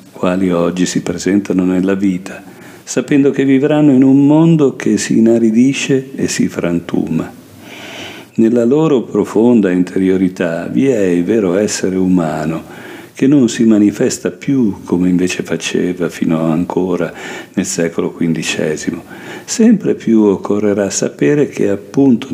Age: 50-69